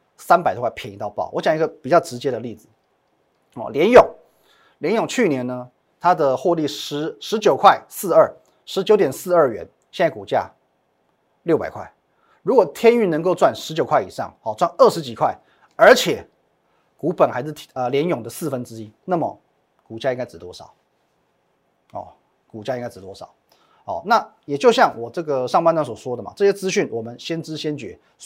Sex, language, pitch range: male, Chinese, 130-180 Hz